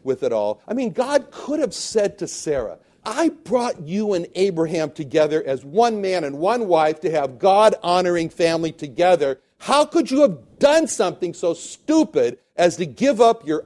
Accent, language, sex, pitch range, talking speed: American, English, male, 160-225 Hz, 185 wpm